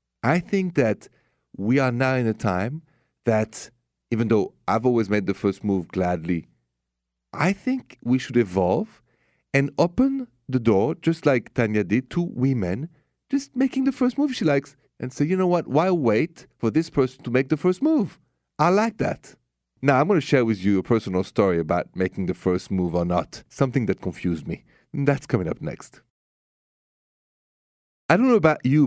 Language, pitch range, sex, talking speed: English, 95-145 Hz, male, 185 wpm